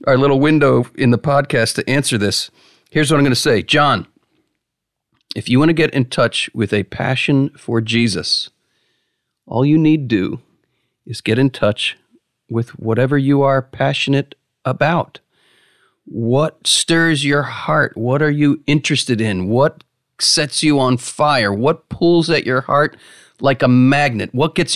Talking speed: 160 wpm